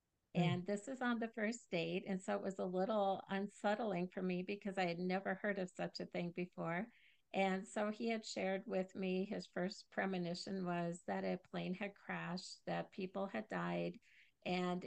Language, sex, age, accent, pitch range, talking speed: English, female, 50-69, American, 175-200 Hz, 190 wpm